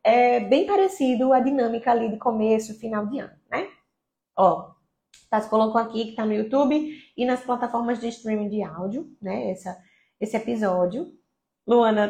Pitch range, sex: 200-265 Hz, female